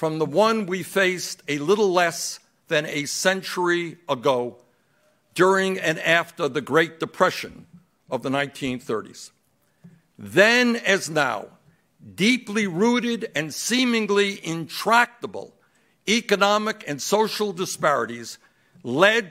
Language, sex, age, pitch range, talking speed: English, male, 60-79, 155-200 Hz, 105 wpm